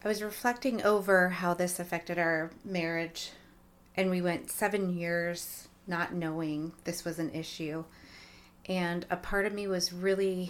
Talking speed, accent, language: 155 wpm, American, English